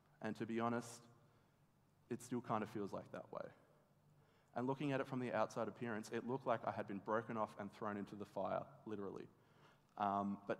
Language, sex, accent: English, male, Australian